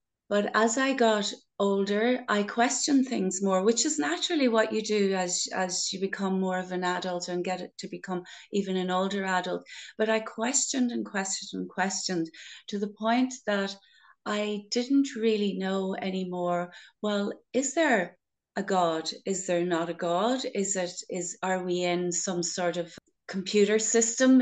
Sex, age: female, 30-49